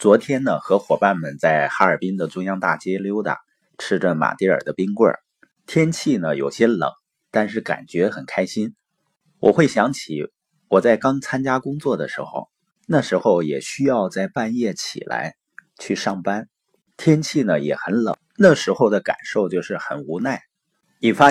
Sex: male